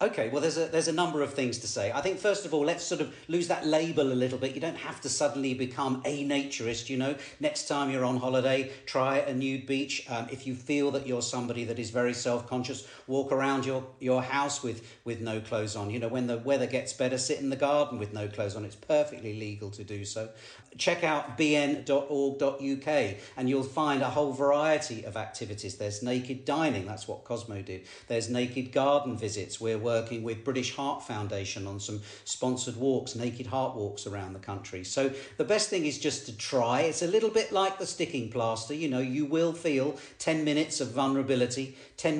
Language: English